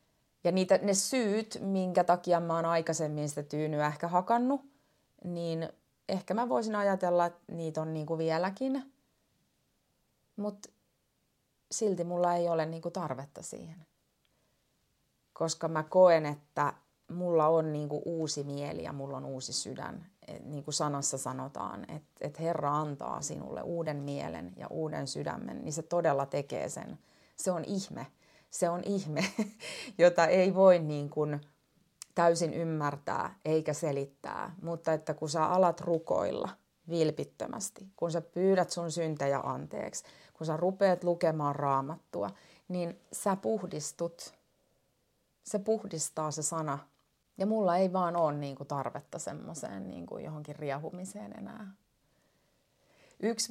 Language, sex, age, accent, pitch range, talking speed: Finnish, female, 30-49, native, 150-185 Hz, 125 wpm